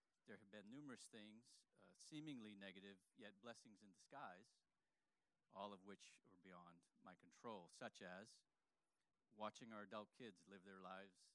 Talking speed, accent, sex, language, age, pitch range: 150 wpm, American, male, English, 40-59, 95-120 Hz